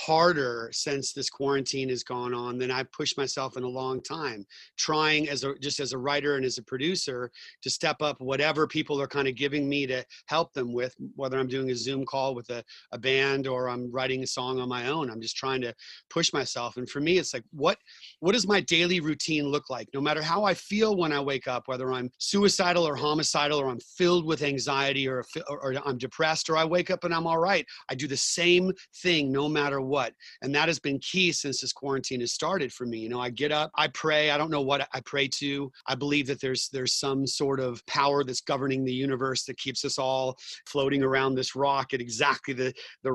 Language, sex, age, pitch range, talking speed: English, male, 30-49, 130-150 Hz, 235 wpm